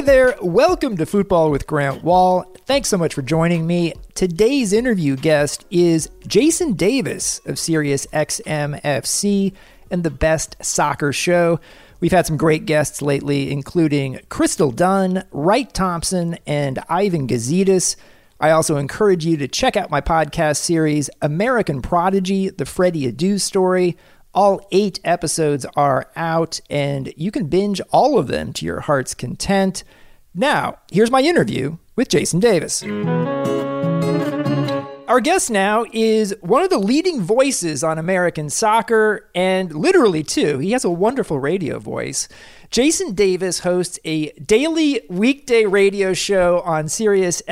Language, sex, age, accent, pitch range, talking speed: English, male, 40-59, American, 155-205 Hz, 140 wpm